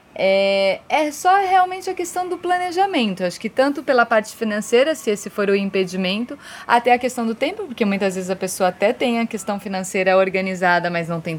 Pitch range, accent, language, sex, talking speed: 190-270 Hz, Brazilian, Portuguese, female, 200 wpm